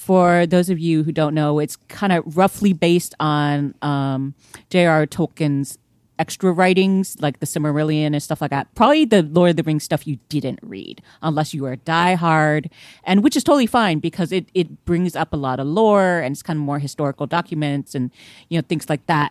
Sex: female